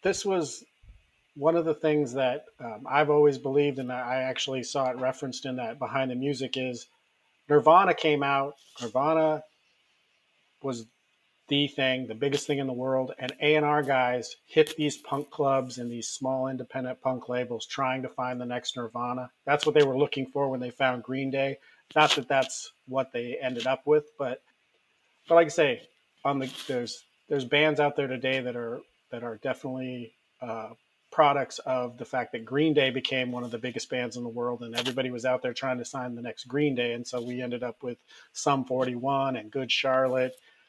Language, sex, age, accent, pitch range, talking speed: English, male, 40-59, American, 125-145 Hz, 190 wpm